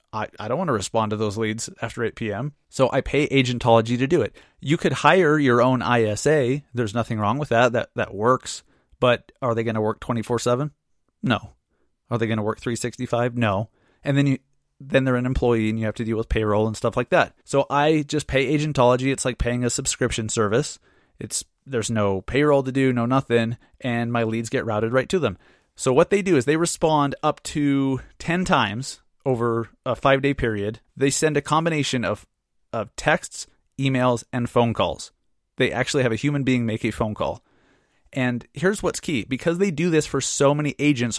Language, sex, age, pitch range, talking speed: English, male, 30-49, 115-145 Hz, 205 wpm